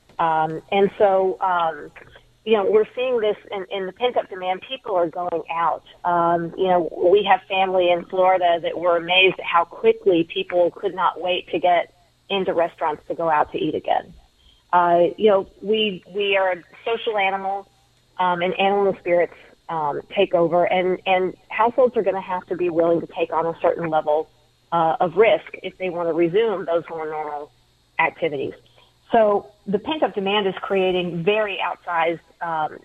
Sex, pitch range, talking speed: female, 170-195 Hz, 180 wpm